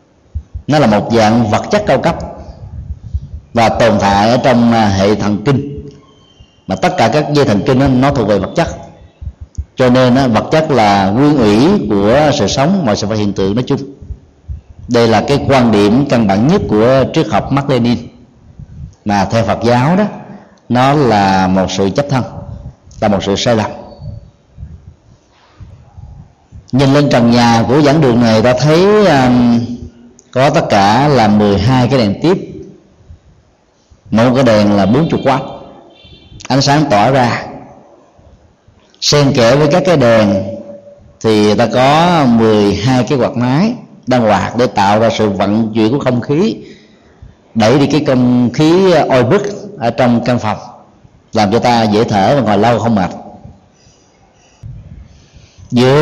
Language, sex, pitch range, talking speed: Vietnamese, male, 105-140 Hz, 160 wpm